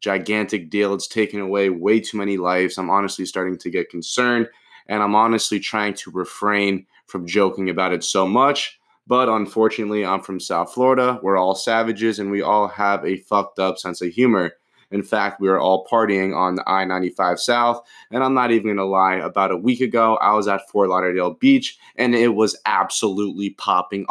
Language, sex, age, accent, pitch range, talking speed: English, male, 20-39, American, 95-120 Hz, 195 wpm